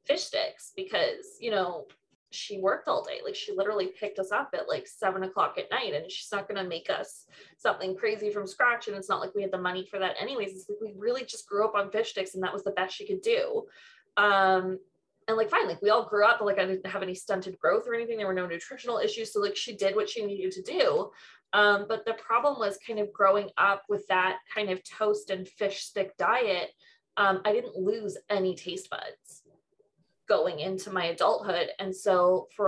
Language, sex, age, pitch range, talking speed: English, female, 20-39, 195-275 Hz, 230 wpm